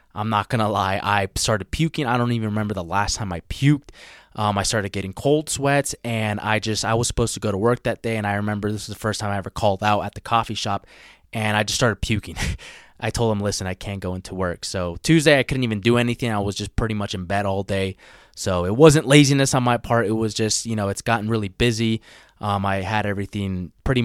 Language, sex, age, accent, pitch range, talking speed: English, male, 20-39, American, 100-120 Hz, 250 wpm